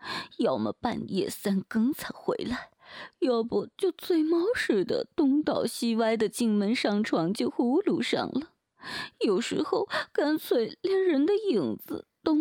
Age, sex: 20-39, female